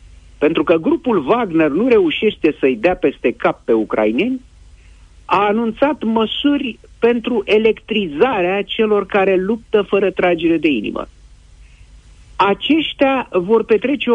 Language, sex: Romanian, male